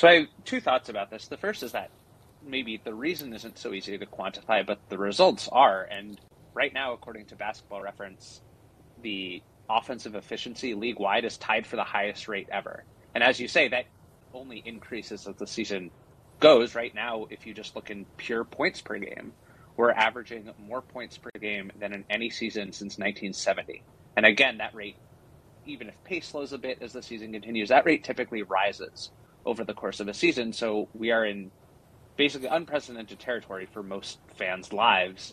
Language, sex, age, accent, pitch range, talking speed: English, male, 30-49, American, 100-120 Hz, 185 wpm